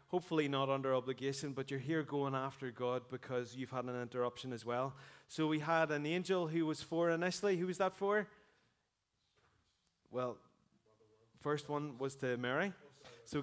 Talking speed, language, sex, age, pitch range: 165 wpm, English, male, 30-49, 125-155 Hz